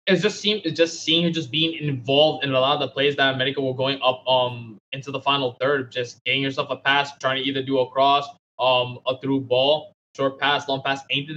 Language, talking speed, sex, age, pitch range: English, 240 wpm, male, 20-39, 125-140 Hz